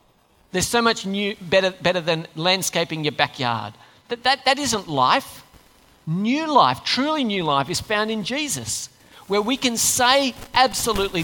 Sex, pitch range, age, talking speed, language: male, 145-220 Hz, 40-59, 155 wpm, English